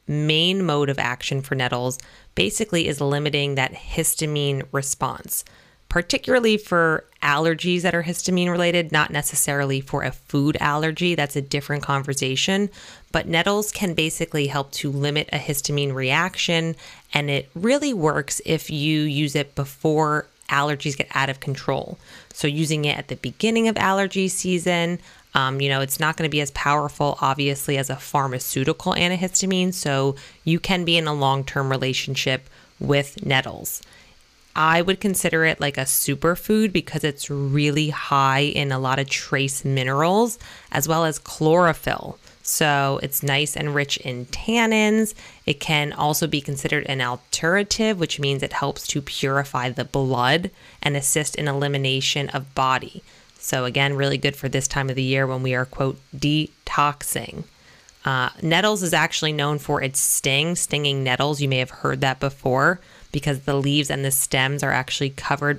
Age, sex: 20-39, female